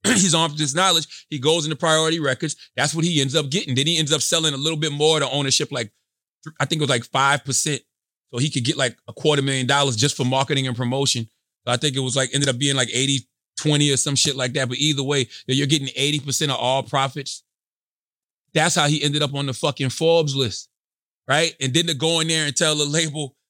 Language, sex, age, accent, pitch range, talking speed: English, male, 30-49, American, 140-195 Hz, 245 wpm